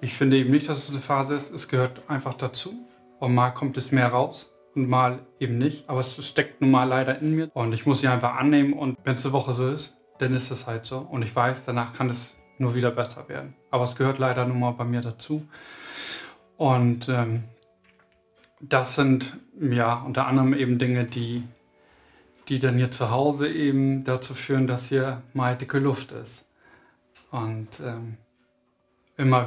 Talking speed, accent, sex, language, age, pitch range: 195 wpm, German, male, German, 10-29, 125-140 Hz